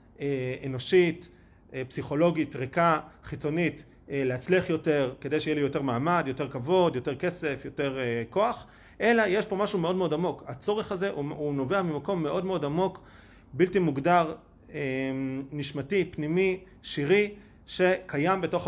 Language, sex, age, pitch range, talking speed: Hebrew, male, 30-49, 130-185 Hz, 130 wpm